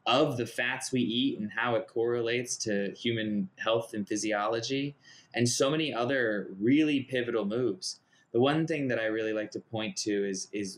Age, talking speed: 20-39, 185 wpm